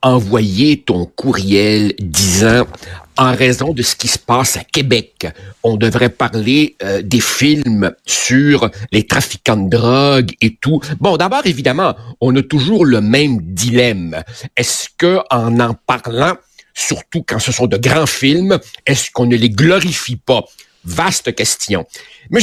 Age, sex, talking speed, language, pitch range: 60-79, male, 155 wpm, French, 115-160 Hz